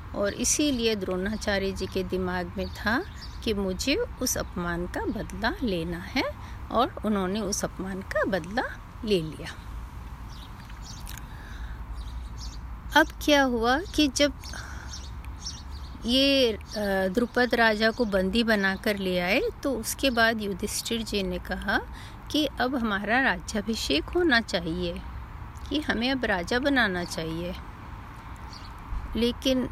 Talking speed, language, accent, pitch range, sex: 115 wpm, Hindi, native, 190-250 Hz, female